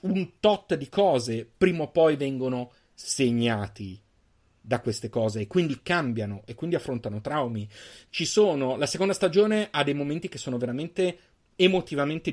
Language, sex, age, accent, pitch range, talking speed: Italian, male, 30-49, native, 115-180 Hz, 150 wpm